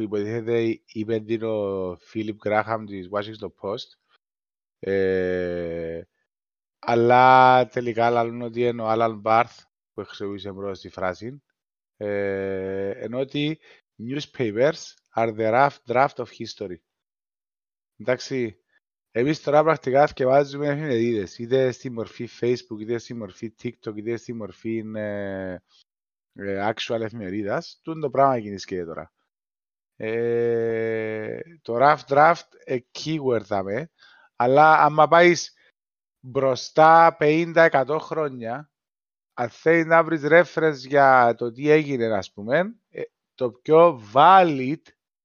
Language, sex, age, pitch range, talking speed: Greek, male, 30-49, 110-150 Hz, 110 wpm